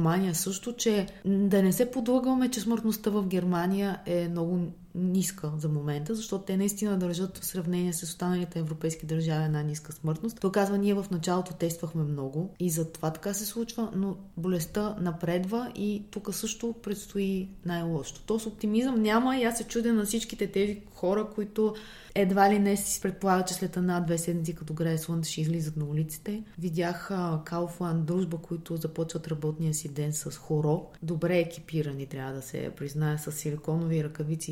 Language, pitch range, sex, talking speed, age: Bulgarian, 165-205 Hz, female, 170 wpm, 20-39